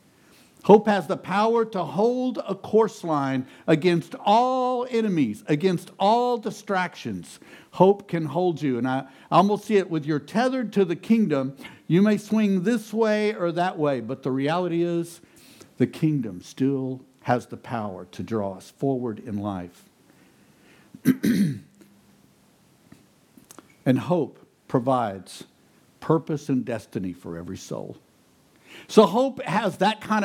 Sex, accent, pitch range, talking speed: male, American, 145-215 Hz, 135 wpm